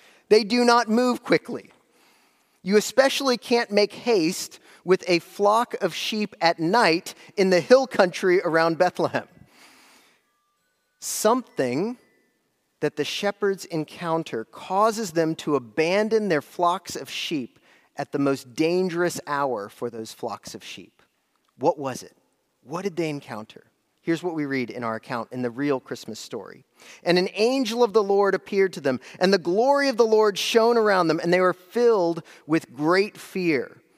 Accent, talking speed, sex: American, 160 wpm, male